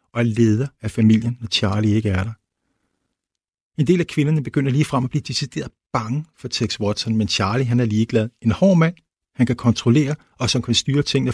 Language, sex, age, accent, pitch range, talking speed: Danish, male, 50-69, native, 110-135 Hz, 205 wpm